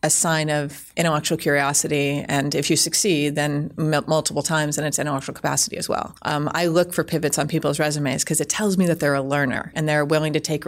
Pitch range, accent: 145-155 Hz, American